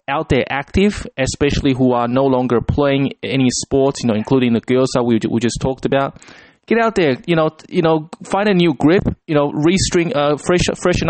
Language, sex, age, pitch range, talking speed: English, male, 20-39, 125-170 Hz, 210 wpm